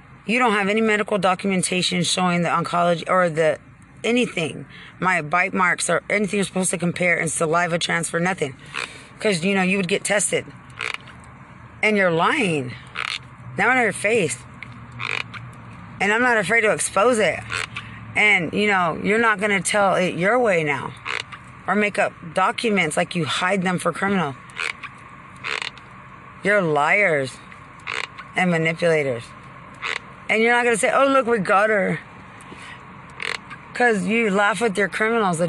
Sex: female